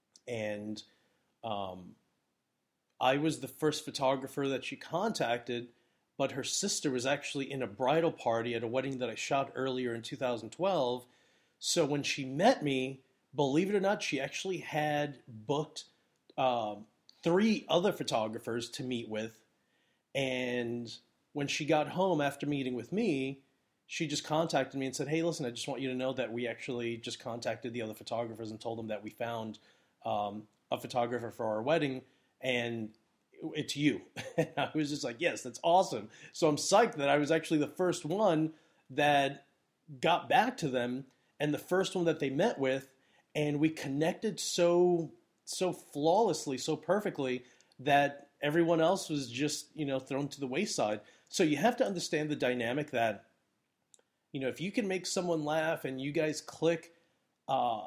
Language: English